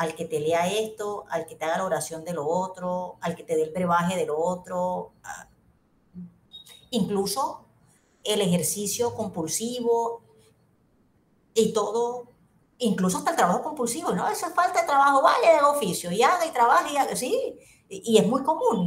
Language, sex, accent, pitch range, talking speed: Spanish, female, American, 170-225 Hz, 170 wpm